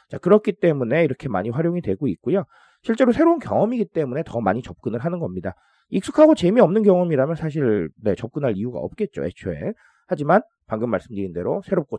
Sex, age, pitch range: male, 30-49, 120-205 Hz